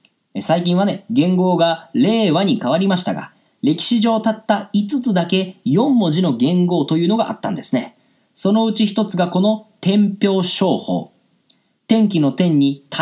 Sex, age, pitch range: male, 40-59, 180-230 Hz